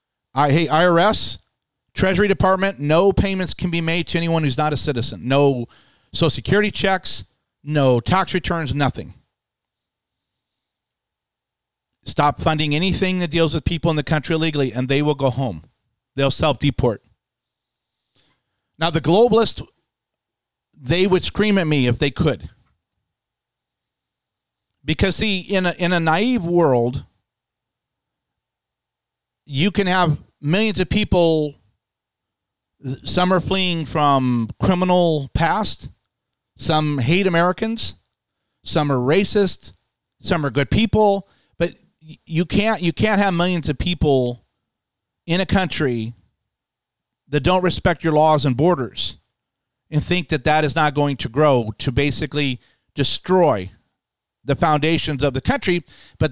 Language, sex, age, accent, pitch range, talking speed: English, male, 40-59, American, 130-180 Hz, 130 wpm